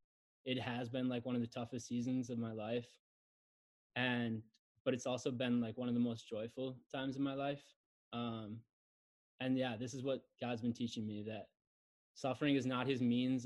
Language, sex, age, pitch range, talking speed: English, male, 20-39, 115-130 Hz, 190 wpm